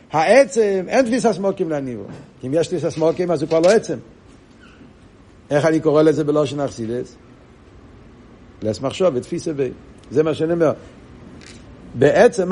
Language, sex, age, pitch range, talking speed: Hebrew, male, 60-79, 150-195 Hz, 145 wpm